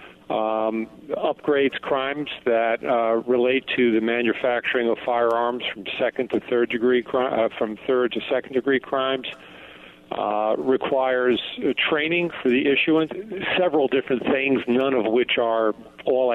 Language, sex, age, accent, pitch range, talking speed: English, male, 50-69, American, 120-140 Hz, 135 wpm